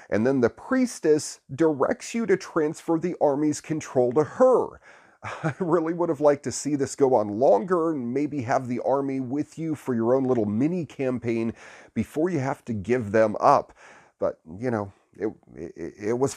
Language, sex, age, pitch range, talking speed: English, male, 40-59, 110-145 Hz, 185 wpm